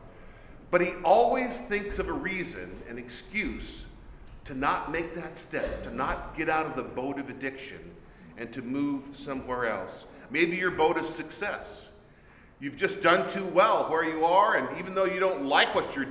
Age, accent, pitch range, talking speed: 50-69, American, 155-225 Hz, 185 wpm